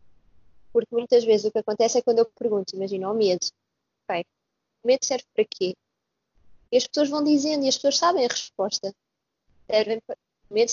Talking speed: 170 wpm